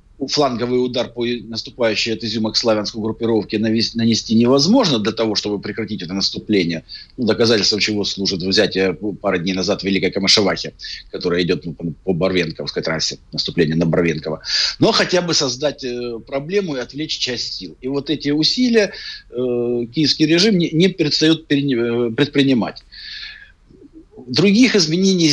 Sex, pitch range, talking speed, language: male, 105-145 Hz, 125 wpm, Russian